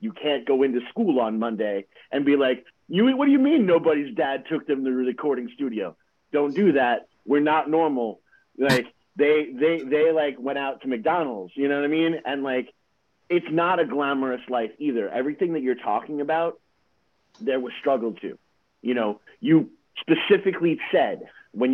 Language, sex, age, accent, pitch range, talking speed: English, male, 30-49, American, 130-160 Hz, 180 wpm